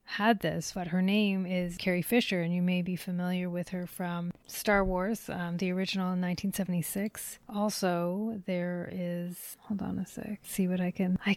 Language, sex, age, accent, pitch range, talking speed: English, female, 30-49, American, 180-200 Hz, 185 wpm